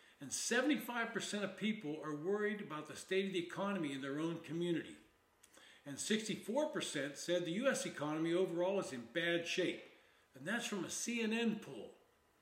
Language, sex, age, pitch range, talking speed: English, male, 60-79, 165-215 Hz, 160 wpm